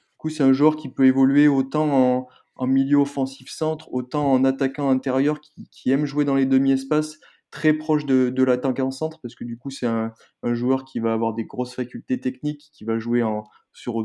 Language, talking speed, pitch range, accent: French, 220 wpm, 125-145 Hz, French